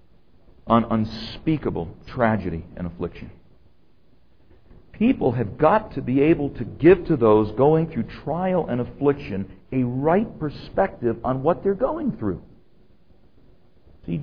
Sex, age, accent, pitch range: male, 60-79, American, 110-160 Hz